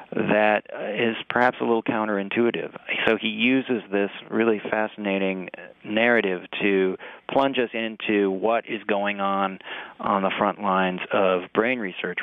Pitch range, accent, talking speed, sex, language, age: 100-115 Hz, American, 135 wpm, male, English, 40-59